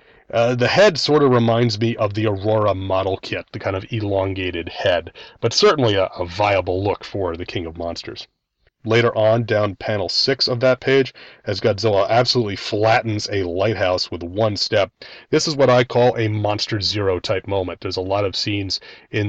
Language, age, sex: English, 30-49, male